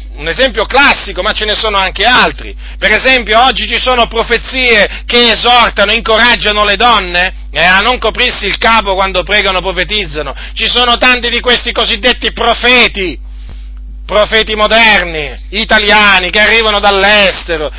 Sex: male